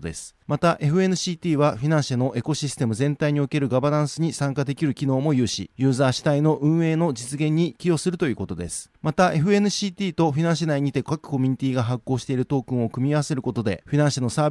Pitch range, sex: 130-160 Hz, male